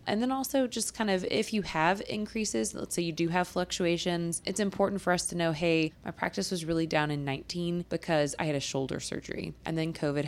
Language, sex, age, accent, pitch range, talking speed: English, female, 20-39, American, 145-180 Hz, 230 wpm